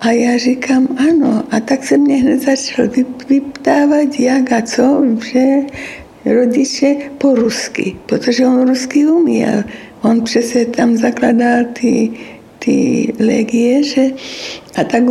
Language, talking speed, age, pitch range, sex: Slovak, 120 wpm, 60-79, 235-275 Hz, female